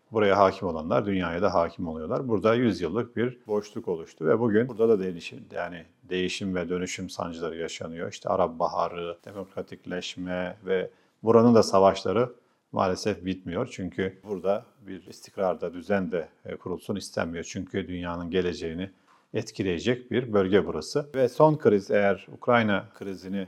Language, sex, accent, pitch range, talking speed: Turkish, male, native, 90-110 Hz, 140 wpm